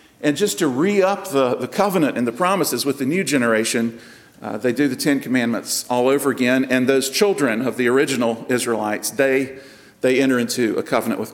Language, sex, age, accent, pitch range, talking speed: English, male, 50-69, American, 115-145 Hz, 195 wpm